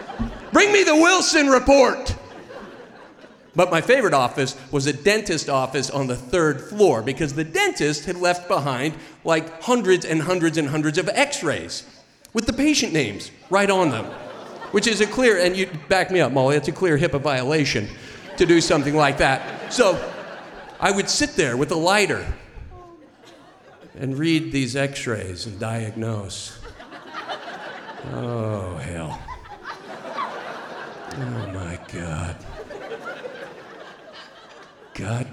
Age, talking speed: 40-59, 130 wpm